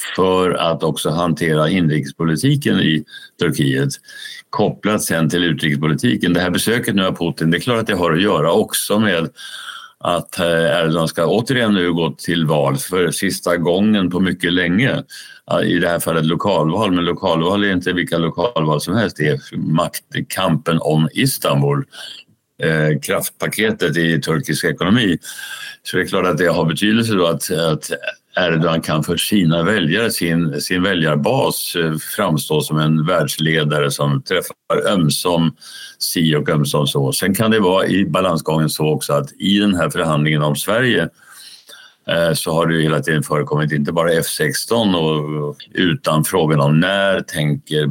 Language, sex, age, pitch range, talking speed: Swedish, male, 60-79, 75-90 Hz, 155 wpm